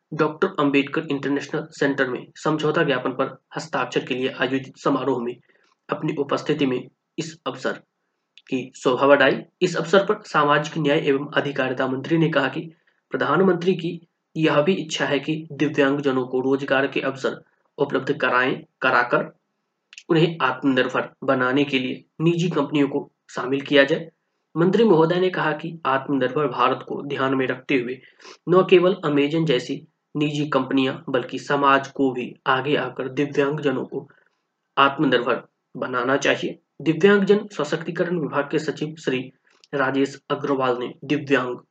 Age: 20-39